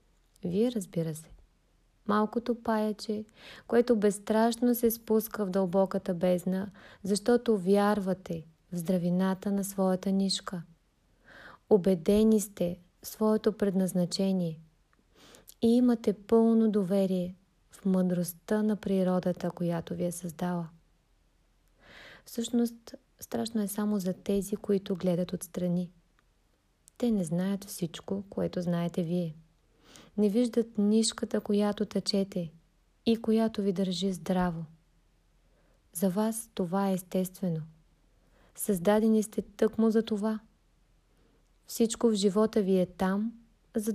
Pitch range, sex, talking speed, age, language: 180-215 Hz, female, 110 wpm, 20-39, Bulgarian